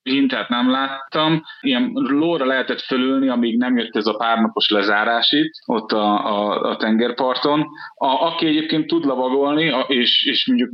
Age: 20-39